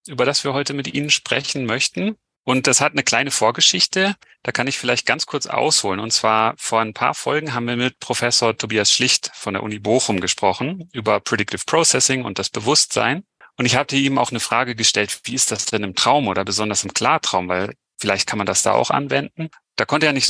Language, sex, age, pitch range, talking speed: German, male, 30-49, 110-135 Hz, 220 wpm